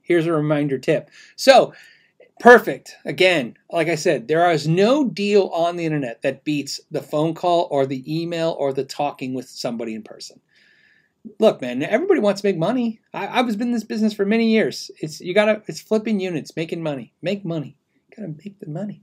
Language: English